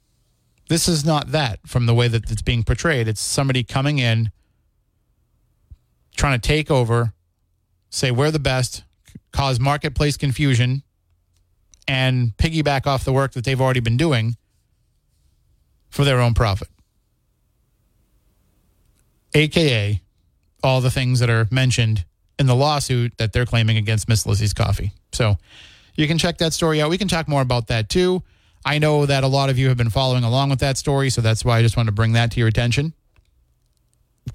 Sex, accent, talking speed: male, American, 170 wpm